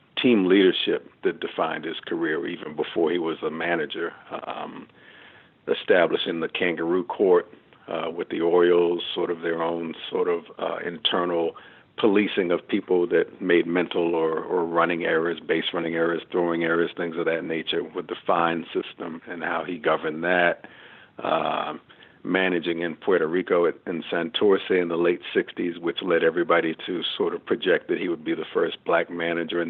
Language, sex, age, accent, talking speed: English, male, 50-69, American, 170 wpm